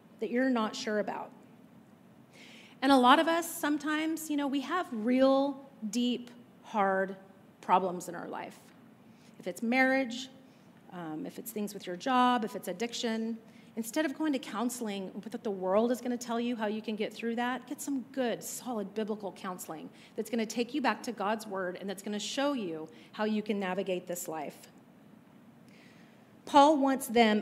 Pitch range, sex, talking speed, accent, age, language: 205-245 Hz, female, 185 wpm, American, 40-59, English